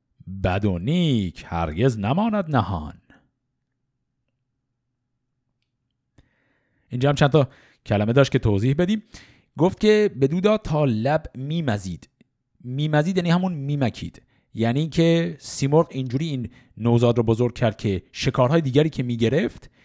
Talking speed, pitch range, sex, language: 110 wpm, 110-165 Hz, male, Persian